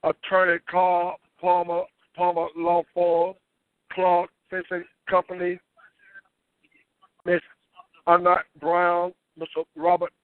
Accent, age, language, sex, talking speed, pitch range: American, 60-79, English, male, 80 wpm, 170-190 Hz